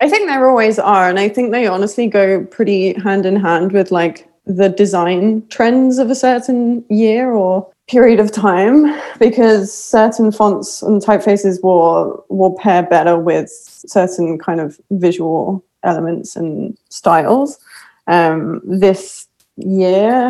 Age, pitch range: 20-39, 185-220 Hz